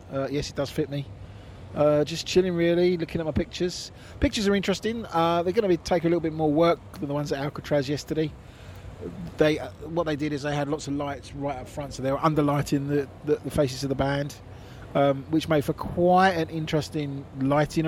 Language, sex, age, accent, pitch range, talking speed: English, male, 30-49, British, 125-155 Hz, 225 wpm